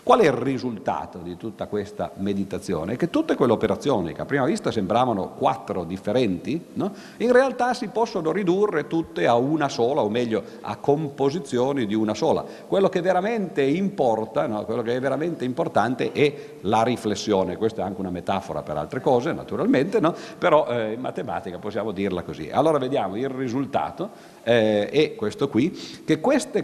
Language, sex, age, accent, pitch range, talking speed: Italian, male, 50-69, native, 100-165 Hz, 170 wpm